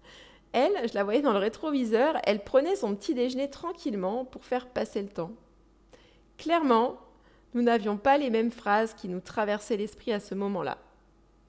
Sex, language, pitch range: female, French, 215-285 Hz